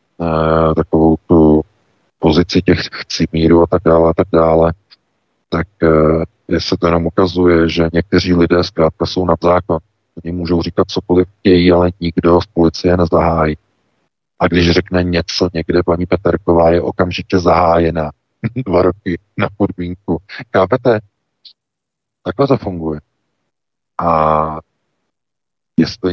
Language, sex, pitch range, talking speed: Czech, male, 85-90 Hz, 120 wpm